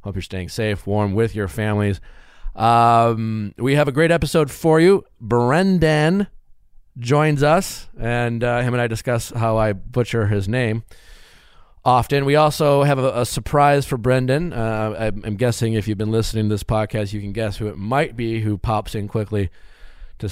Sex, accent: male, American